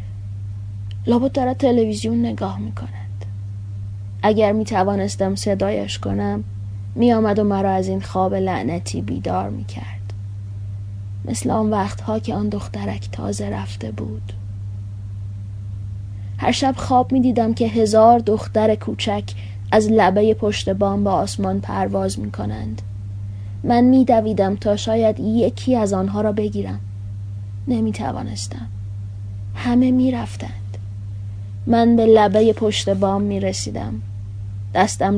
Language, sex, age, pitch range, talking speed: Persian, female, 20-39, 100-105 Hz, 120 wpm